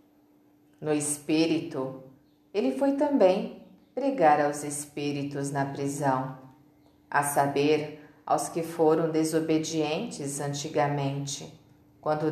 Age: 40-59